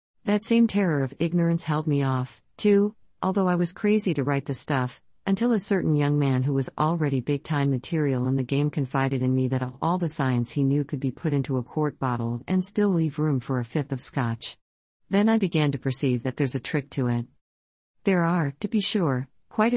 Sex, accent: female, American